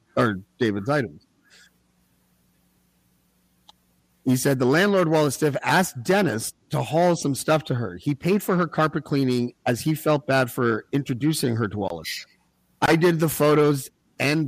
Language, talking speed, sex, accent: English, 155 wpm, male, American